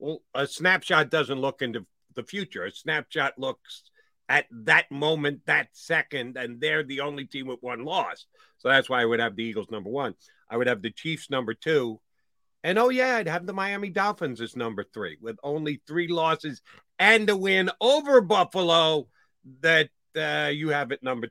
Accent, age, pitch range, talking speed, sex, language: American, 50-69, 125-180 Hz, 190 wpm, male, English